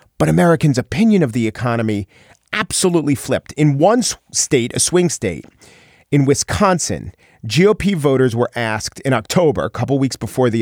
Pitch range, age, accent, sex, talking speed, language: 120-165 Hz, 40-59, American, male, 155 wpm, English